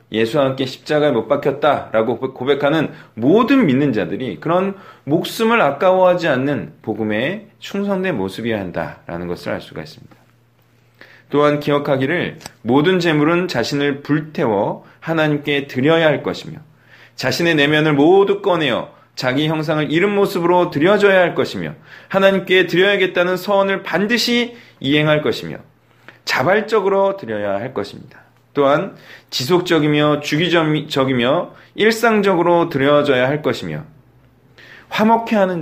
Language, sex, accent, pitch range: Korean, male, native, 135-180 Hz